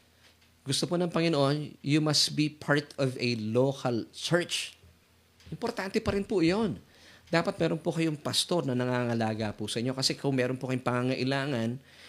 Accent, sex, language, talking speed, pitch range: native, male, Filipino, 165 wpm, 115-150 Hz